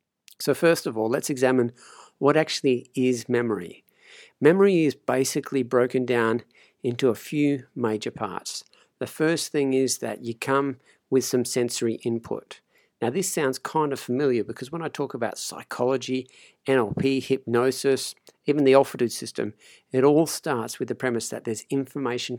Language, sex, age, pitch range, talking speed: English, male, 50-69, 120-140 Hz, 155 wpm